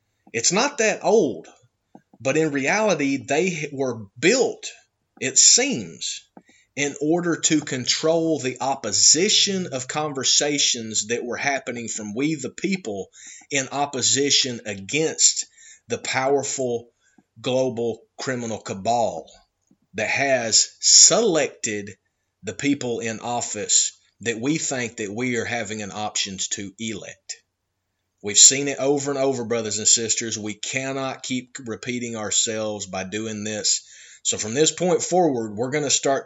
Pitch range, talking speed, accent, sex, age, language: 115-140 Hz, 130 wpm, American, male, 30-49, English